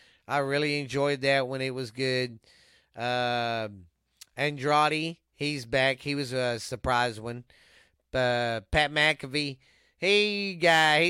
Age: 30-49